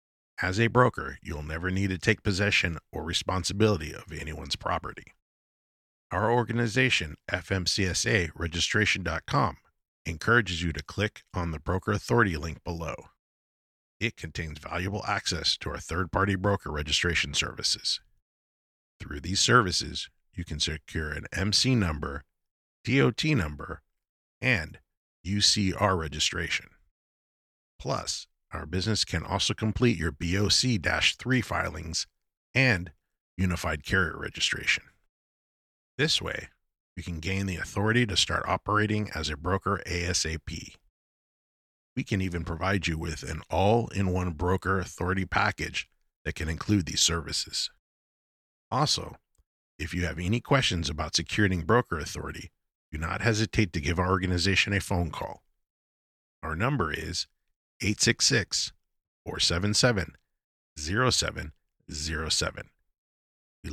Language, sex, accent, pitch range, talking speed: English, male, American, 80-100 Hz, 115 wpm